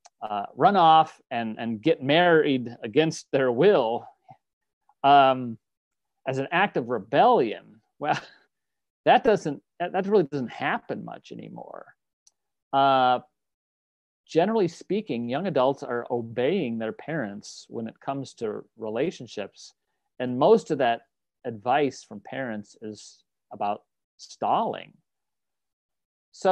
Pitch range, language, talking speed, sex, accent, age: 120-175 Hz, English, 115 wpm, male, American, 40-59